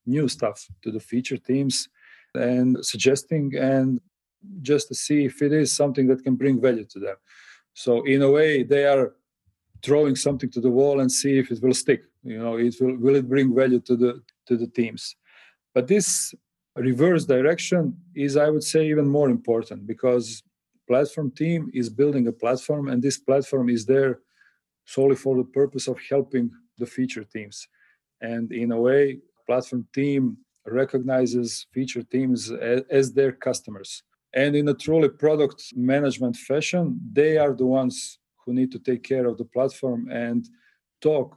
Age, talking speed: 40-59, 170 wpm